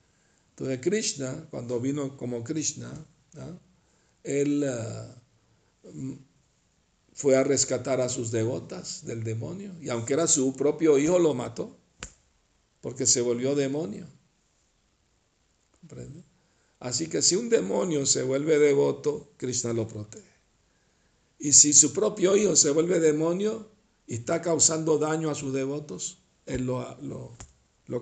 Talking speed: 120 wpm